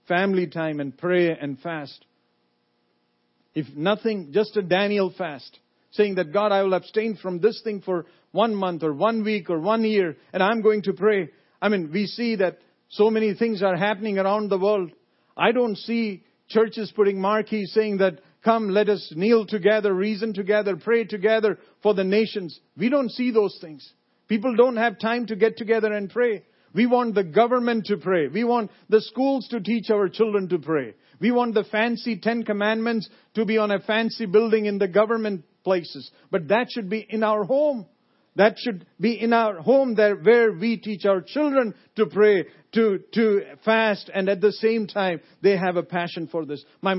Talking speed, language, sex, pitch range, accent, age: 190 wpm, English, male, 185-225 Hz, Indian, 50-69